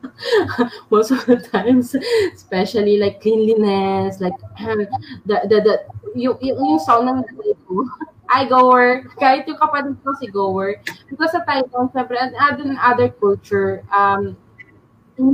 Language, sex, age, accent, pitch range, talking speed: English, female, 20-39, Filipino, 190-265 Hz, 165 wpm